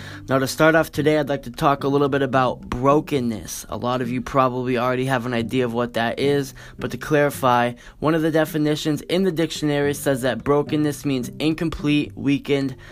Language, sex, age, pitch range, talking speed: English, male, 10-29, 125-150 Hz, 200 wpm